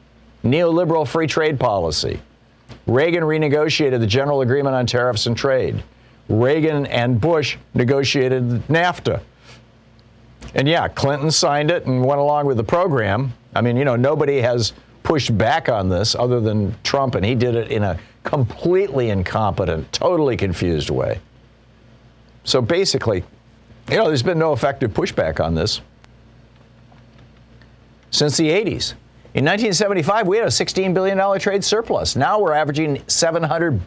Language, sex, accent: English, male, American